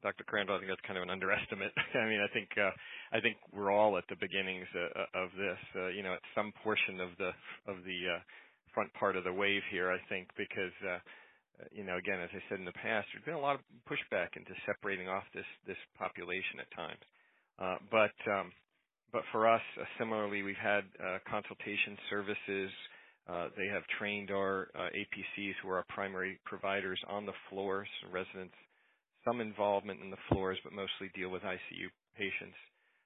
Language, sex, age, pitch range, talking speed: English, male, 40-59, 95-100 Hz, 195 wpm